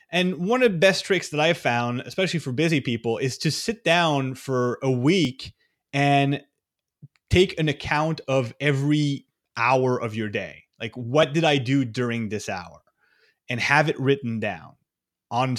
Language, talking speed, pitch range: English, 170 wpm, 120-155 Hz